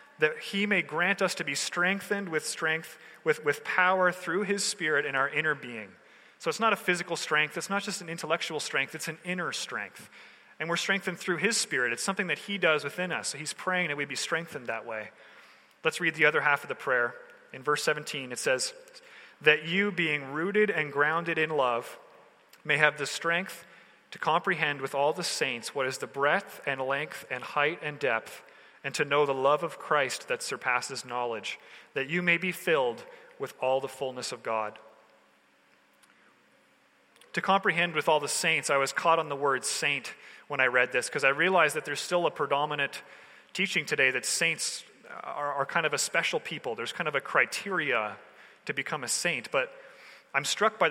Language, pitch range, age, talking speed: English, 145-200 Hz, 30-49, 200 wpm